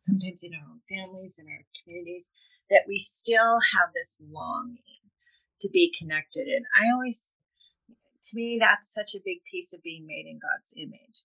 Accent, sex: American, female